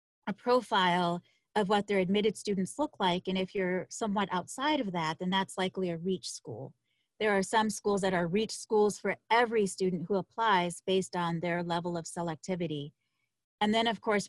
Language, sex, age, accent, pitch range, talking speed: English, female, 30-49, American, 175-220 Hz, 190 wpm